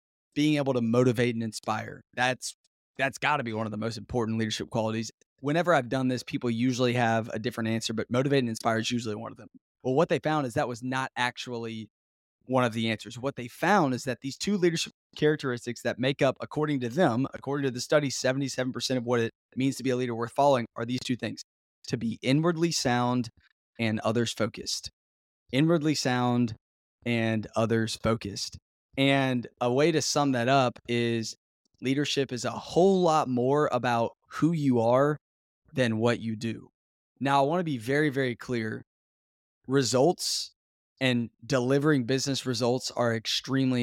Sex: male